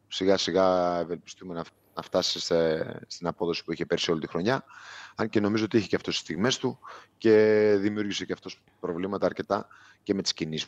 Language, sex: Greek, male